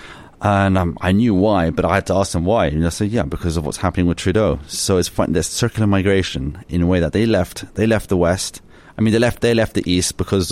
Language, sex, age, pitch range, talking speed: English, male, 30-49, 90-110 Hz, 270 wpm